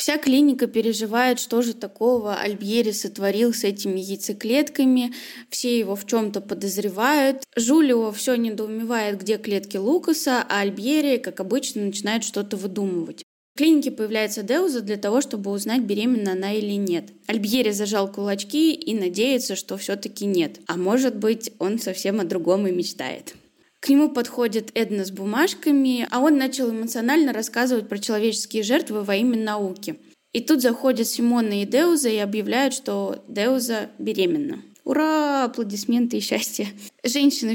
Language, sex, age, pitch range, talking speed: Russian, female, 20-39, 200-255 Hz, 145 wpm